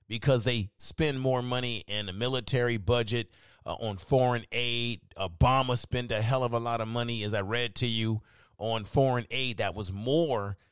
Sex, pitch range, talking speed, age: male, 110-125 Hz, 185 wpm, 40-59